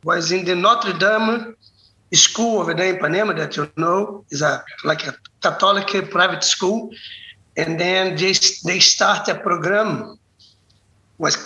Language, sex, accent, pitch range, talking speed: English, male, Brazilian, 145-190 Hz, 155 wpm